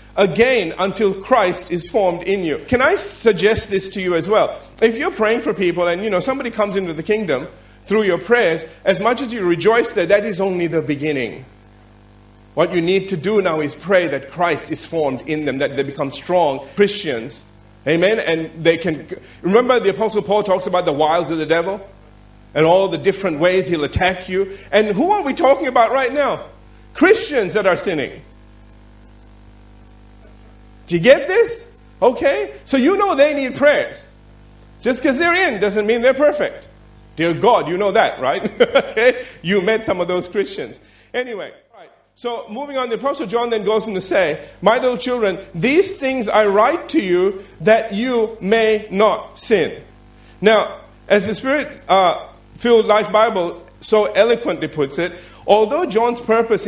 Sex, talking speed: male, 175 wpm